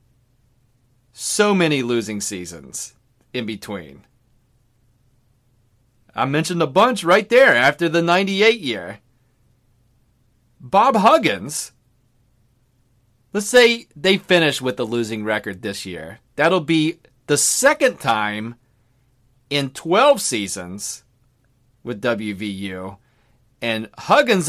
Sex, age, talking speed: male, 30-49, 100 wpm